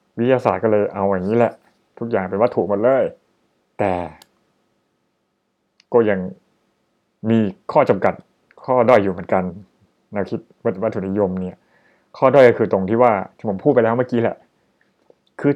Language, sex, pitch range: Thai, male, 105-125 Hz